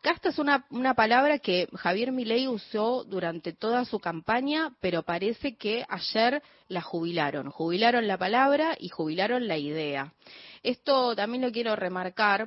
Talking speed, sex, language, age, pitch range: 150 wpm, female, Spanish, 20-39, 175-240 Hz